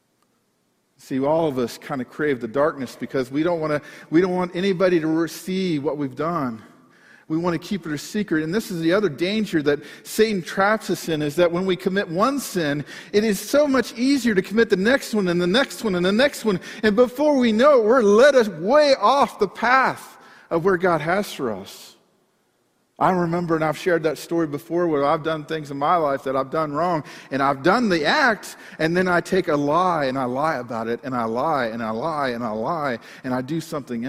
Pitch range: 140-200 Hz